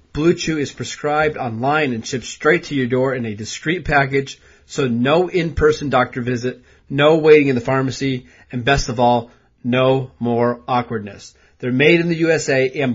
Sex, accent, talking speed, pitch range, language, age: male, American, 180 wpm, 125-155 Hz, English, 30-49